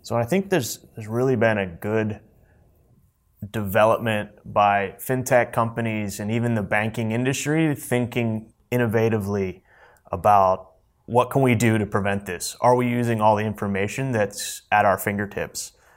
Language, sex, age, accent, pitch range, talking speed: English, male, 30-49, American, 105-120 Hz, 145 wpm